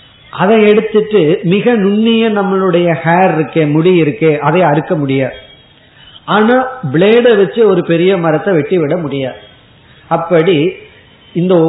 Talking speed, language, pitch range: 75 wpm, Tamil, 145-200 Hz